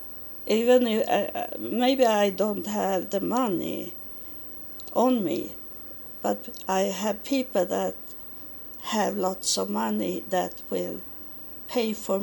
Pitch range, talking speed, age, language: 190-255 Hz, 115 wpm, 60-79, English